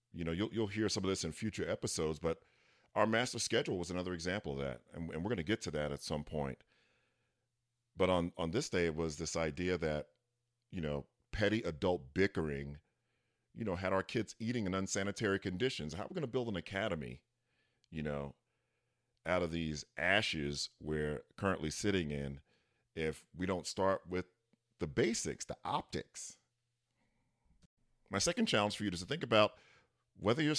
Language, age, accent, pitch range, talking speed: English, 40-59, American, 85-120 Hz, 180 wpm